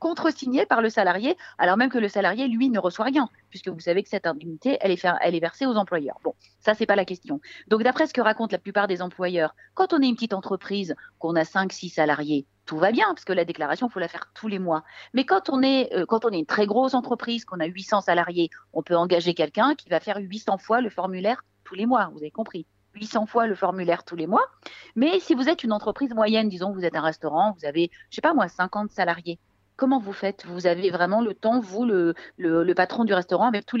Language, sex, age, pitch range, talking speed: French, female, 40-59, 180-240 Hz, 255 wpm